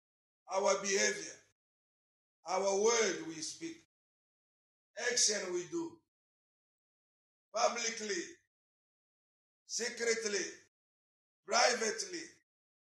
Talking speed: 55 wpm